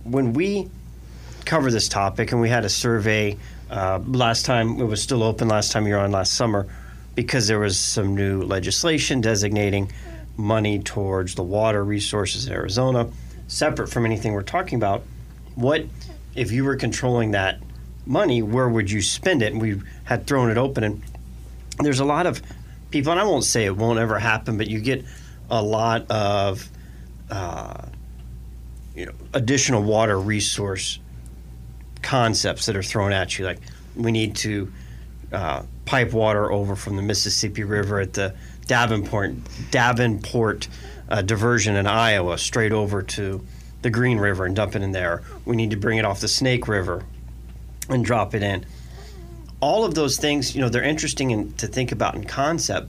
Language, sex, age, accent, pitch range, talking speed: English, male, 40-59, American, 85-115 Hz, 170 wpm